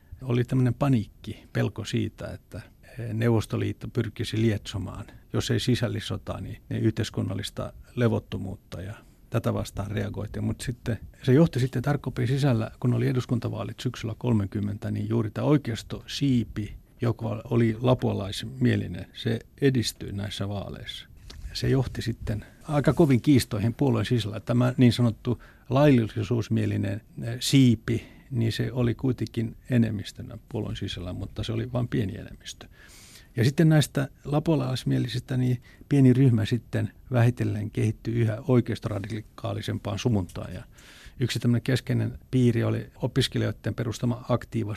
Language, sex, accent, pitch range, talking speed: Finnish, male, native, 105-125 Hz, 120 wpm